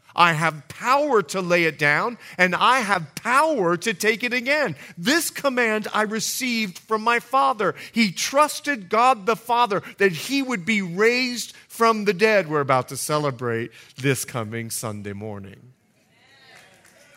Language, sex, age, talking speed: English, male, 40-59, 150 wpm